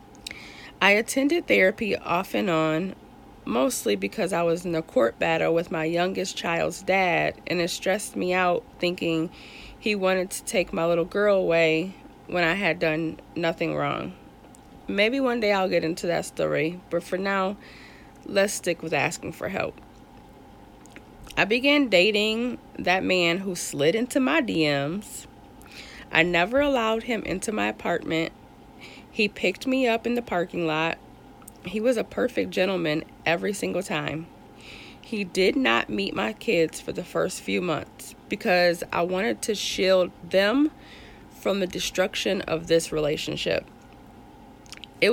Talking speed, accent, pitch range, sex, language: 150 wpm, American, 165-215 Hz, female, English